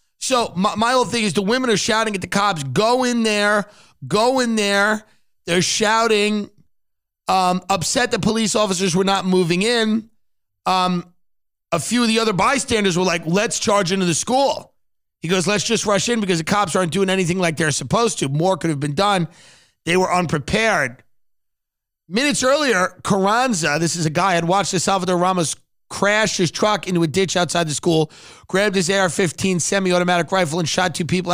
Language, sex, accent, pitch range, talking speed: English, male, American, 165-205 Hz, 190 wpm